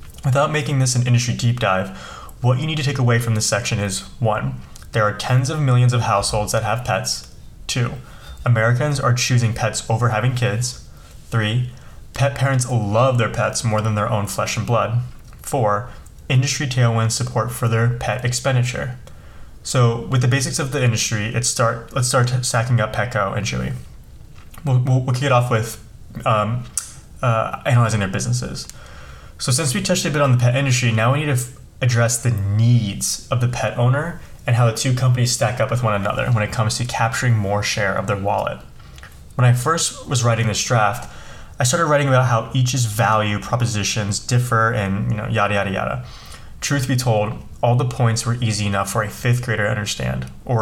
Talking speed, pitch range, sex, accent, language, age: 190 wpm, 105-125 Hz, male, American, English, 20-39